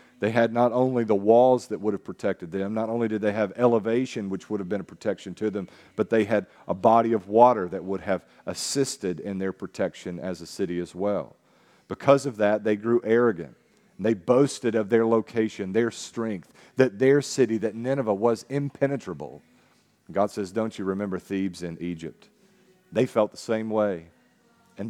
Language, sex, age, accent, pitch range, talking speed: English, male, 40-59, American, 105-135 Hz, 190 wpm